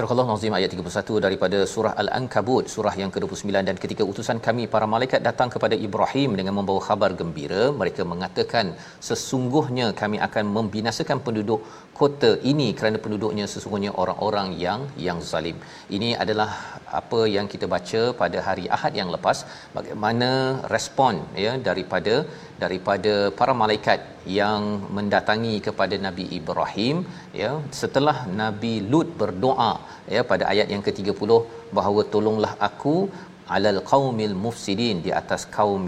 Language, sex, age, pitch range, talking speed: Malayalam, male, 40-59, 100-130 Hz, 135 wpm